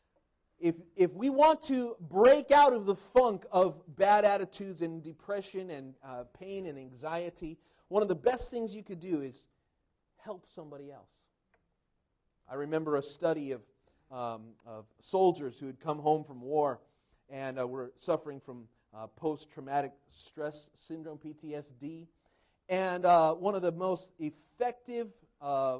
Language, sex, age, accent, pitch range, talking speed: English, male, 40-59, American, 135-195 Hz, 150 wpm